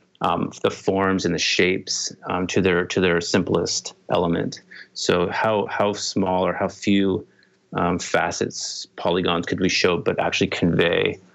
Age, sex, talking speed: 30-49, male, 155 wpm